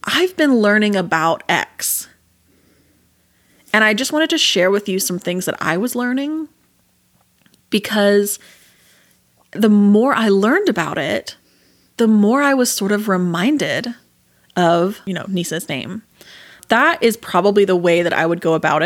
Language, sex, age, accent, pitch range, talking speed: English, female, 30-49, American, 175-225 Hz, 155 wpm